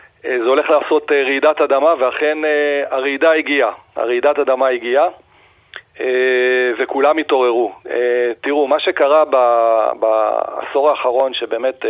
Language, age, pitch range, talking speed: Hebrew, 40-59, 125-150 Hz, 95 wpm